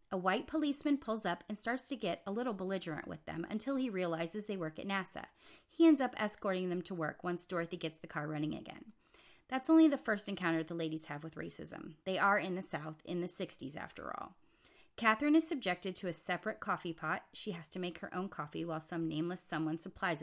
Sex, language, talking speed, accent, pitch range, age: female, English, 225 wpm, American, 165-210 Hz, 30-49